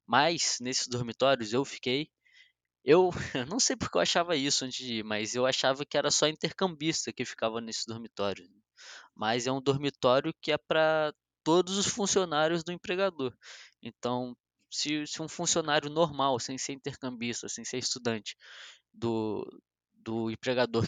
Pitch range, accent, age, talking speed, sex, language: 120-150 Hz, Brazilian, 20-39, 150 wpm, male, Portuguese